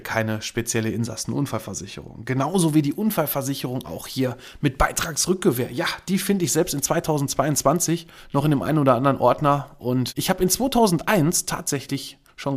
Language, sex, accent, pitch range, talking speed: German, male, German, 115-145 Hz, 155 wpm